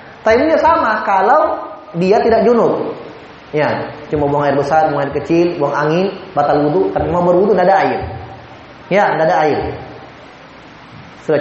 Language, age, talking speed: Indonesian, 20-39, 140 wpm